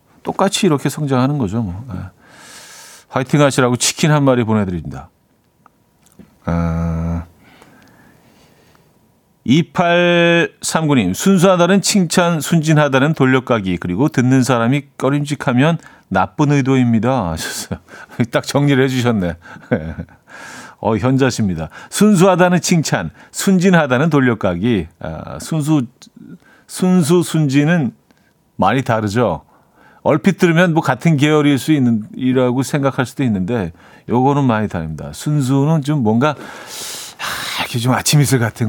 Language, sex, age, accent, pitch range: Korean, male, 40-59, native, 110-155 Hz